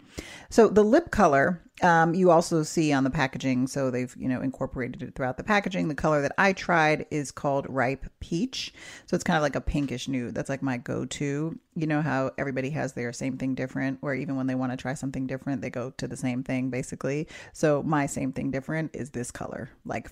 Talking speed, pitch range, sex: 225 wpm, 135-180 Hz, female